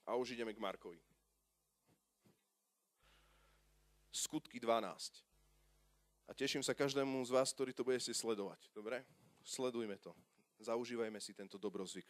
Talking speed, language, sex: 125 wpm, Slovak, male